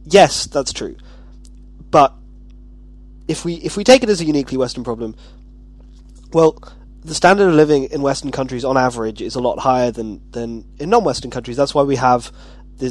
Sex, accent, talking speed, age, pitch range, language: male, British, 180 wpm, 20-39, 125-150 Hz, English